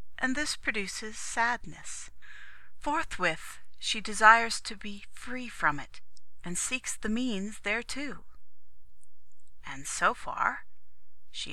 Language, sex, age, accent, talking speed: English, female, 40-59, American, 110 wpm